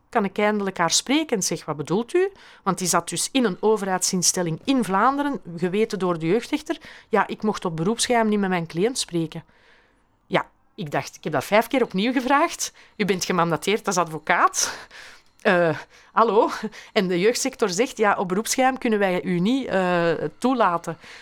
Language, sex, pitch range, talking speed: Dutch, female, 175-225 Hz, 180 wpm